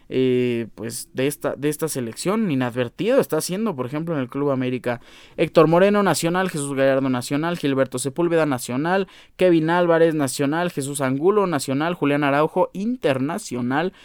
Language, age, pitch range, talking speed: Spanish, 20-39, 135-175 Hz, 140 wpm